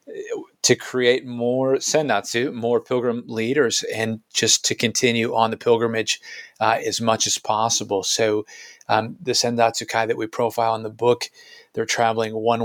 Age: 40-59